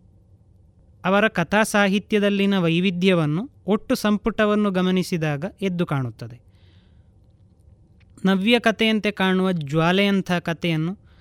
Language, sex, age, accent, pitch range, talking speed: Kannada, male, 20-39, native, 160-210 Hz, 70 wpm